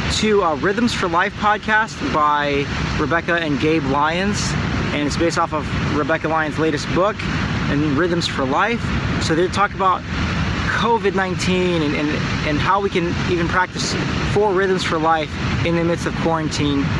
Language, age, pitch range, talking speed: English, 30-49, 150-195 Hz, 165 wpm